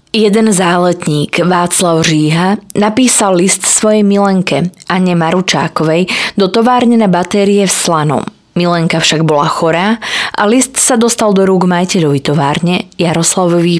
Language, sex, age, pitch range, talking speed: Slovak, female, 20-39, 145-200 Hz, 130 wpm